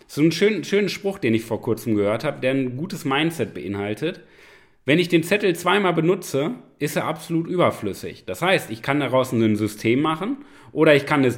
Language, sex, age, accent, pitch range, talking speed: German, male, 30-49, German, 125-170 Hz, 200 wpm